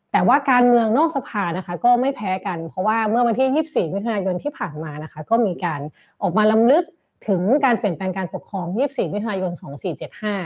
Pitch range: 175-235 Hz